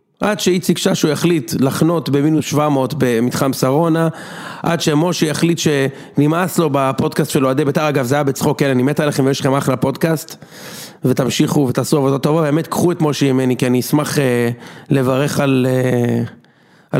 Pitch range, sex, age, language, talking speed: 130-165 Hz, male, 40-59, Hebrew, 160 wpm